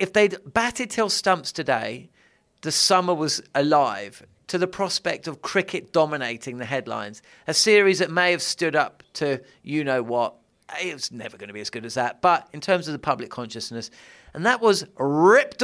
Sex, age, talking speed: male, 40-59, 190 wpm